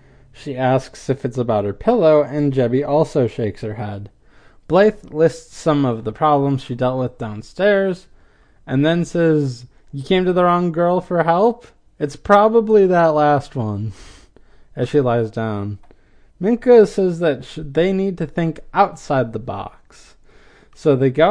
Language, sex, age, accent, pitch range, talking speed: English, male, 20-39, American, 135-195 Hz, 160 wpm